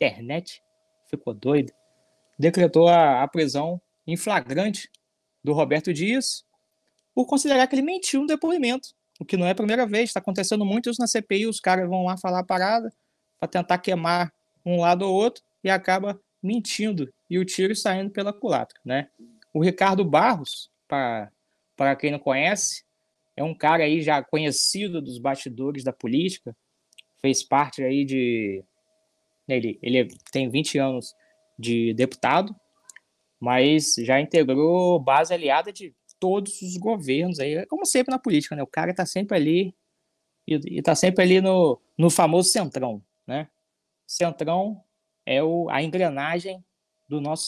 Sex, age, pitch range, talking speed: male, 20-39, 150-210 Hz, 150 wpm